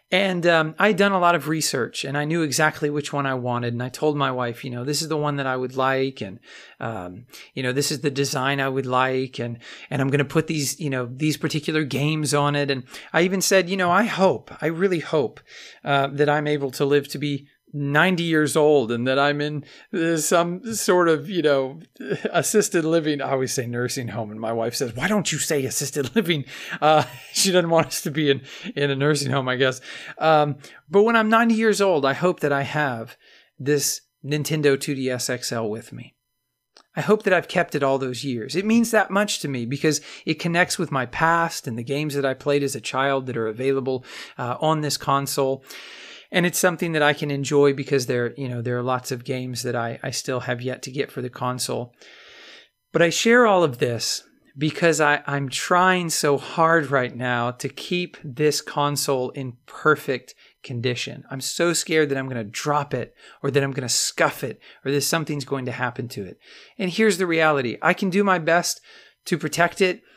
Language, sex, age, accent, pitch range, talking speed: English, male, 40-59, American, 130-165 Hz, 220 wpm